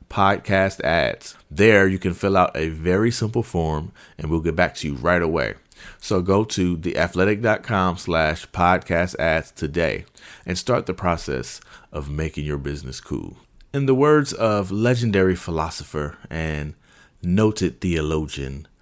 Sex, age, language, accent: male, 30-49, English, American